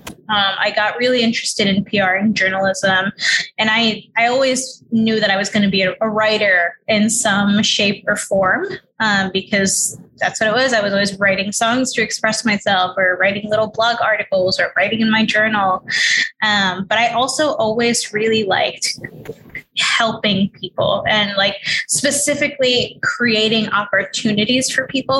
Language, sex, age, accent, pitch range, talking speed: English, female, 10-29, American, 195-230 Hz, 160 wpm